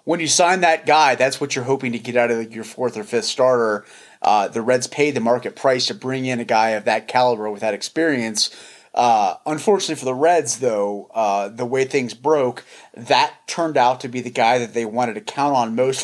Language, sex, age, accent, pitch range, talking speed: English, male, 30-49, American, 120-150 Hz, 230 wpm